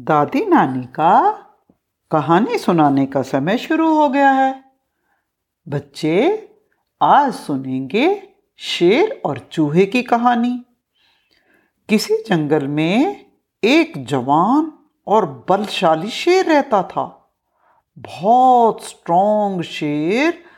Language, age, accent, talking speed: Hindi, 60-79, native, 95 wpm